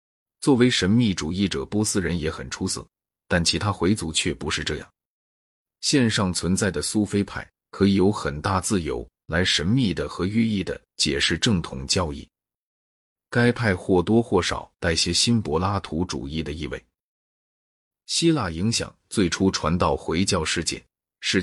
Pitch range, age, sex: 85-105 Hz, 30-49, male